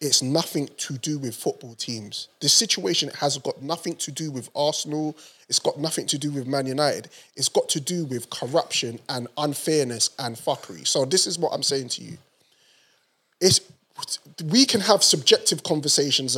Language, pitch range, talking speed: English, 140-200 Hz, 170 wpm